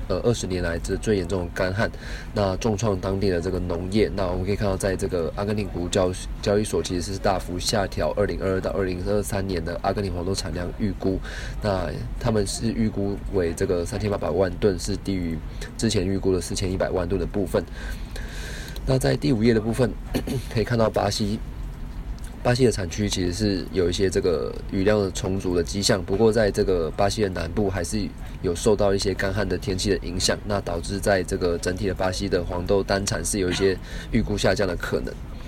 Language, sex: Chinese, male